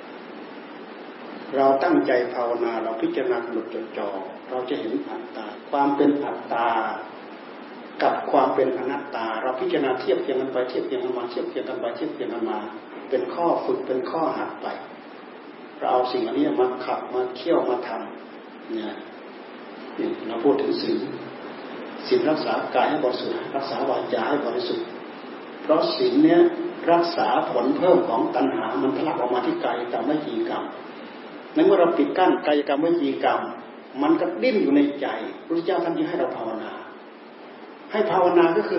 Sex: male